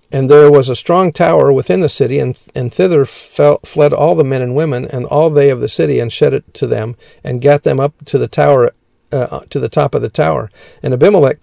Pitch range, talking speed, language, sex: 125-150 Hz, 220 wpm, English, male